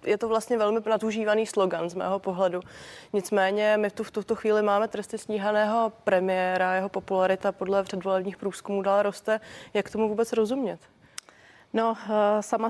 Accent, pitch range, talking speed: native, 195-215 Hz, 150 wpm